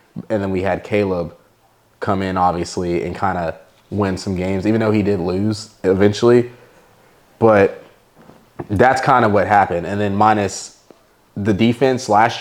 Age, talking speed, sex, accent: 20-39, 155 wpm, male, American